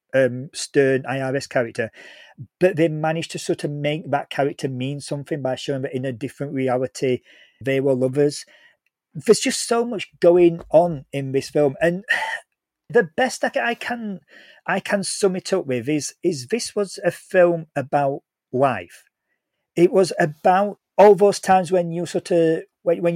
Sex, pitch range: male, 140-170 Hz